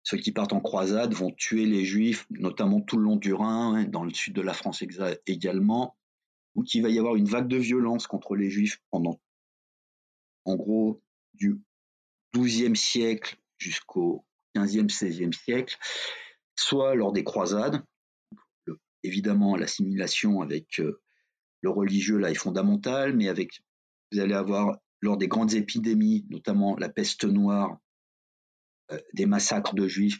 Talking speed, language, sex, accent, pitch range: 145 wpm, French, male, French, 100-135 Hz